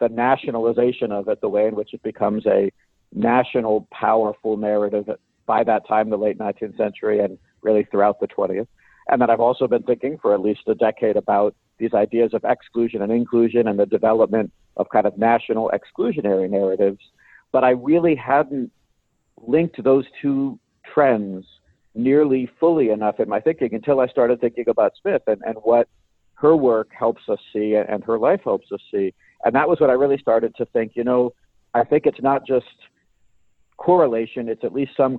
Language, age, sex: English, 50-69, male